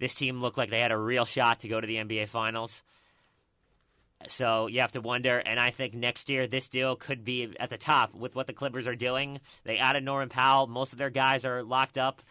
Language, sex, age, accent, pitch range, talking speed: English, male, 30-49, American, 115-135 Hz, 240 wpm